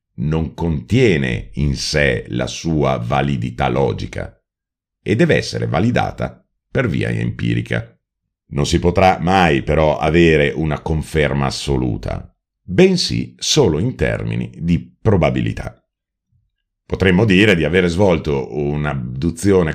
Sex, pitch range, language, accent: male, 70-95 Hz, Italian, native